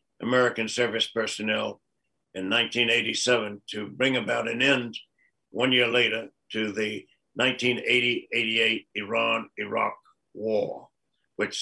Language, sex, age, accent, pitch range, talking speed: English, male, 60-79, American, 120-135 Hz, 100 wpm